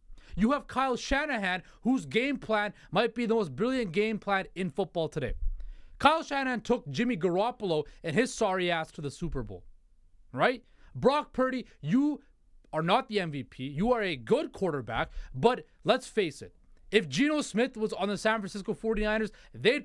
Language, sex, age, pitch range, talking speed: English, male, 30-49, 160-225 Hz, 170 wpm